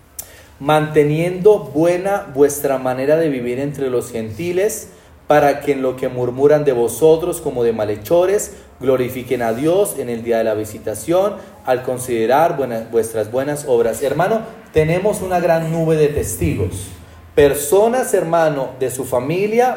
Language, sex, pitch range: Spanish, male, 120-185 Hz